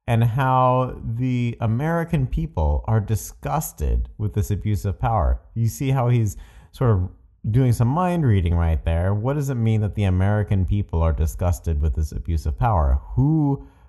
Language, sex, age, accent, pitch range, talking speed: English, male, 30-49, American, 85-130 Hz, 175 wpm